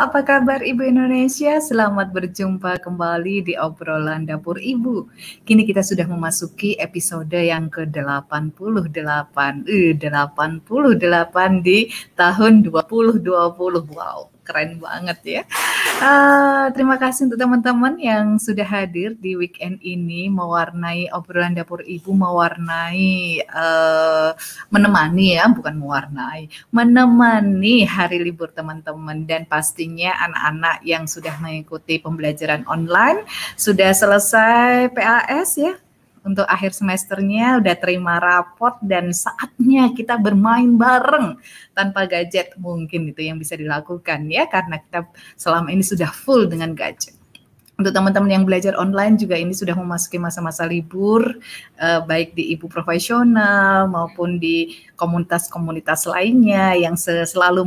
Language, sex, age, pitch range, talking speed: Indonesian, female, 30-49, 165-215 Hz, 120 wpm